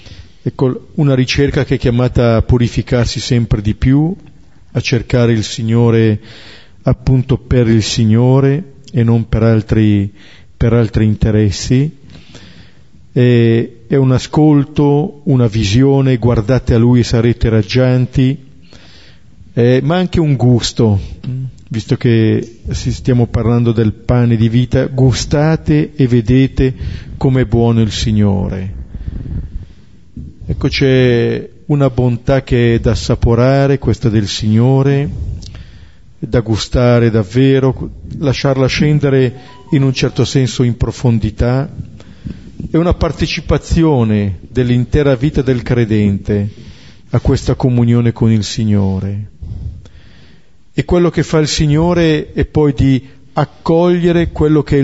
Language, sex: Italian, male